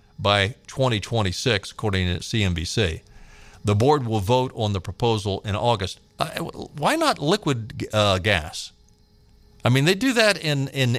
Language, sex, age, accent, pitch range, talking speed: English, male, 50-69, American, 105-145 Hz, 145 wpm